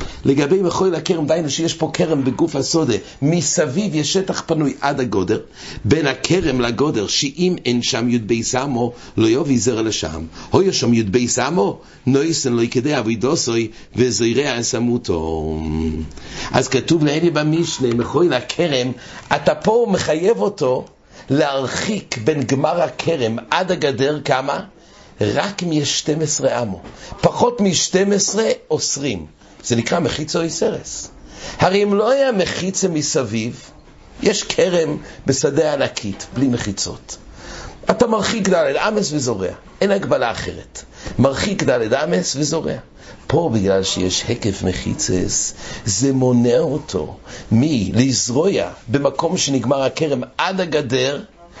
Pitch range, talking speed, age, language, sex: 115-160 Hz, 120 wpm, 60-79, English, male